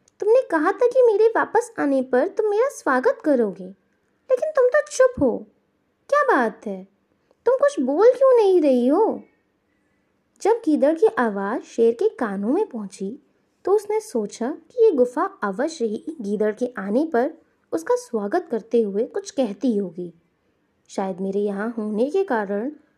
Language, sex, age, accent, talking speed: Hindi, female, 20-39, native, 160 wpm